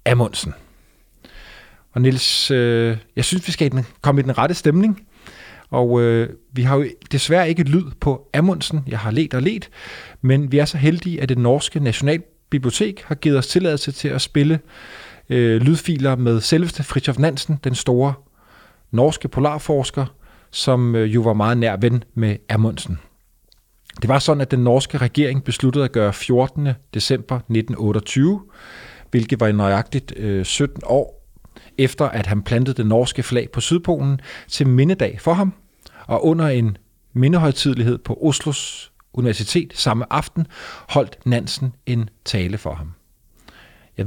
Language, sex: Danish, male